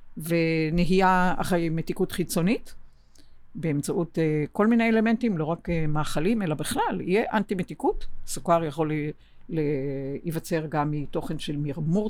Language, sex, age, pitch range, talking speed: Hebrew, female, 50-69, 160-200 Hz, 110 wpm